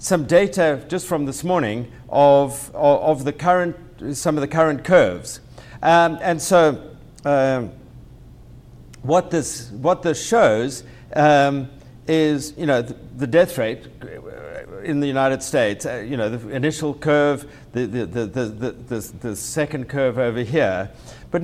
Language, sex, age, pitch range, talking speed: English, male, 60-79, 130-165 Hz, 160 wpm